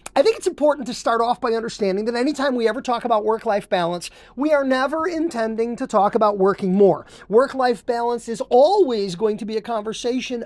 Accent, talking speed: American, 200 wpm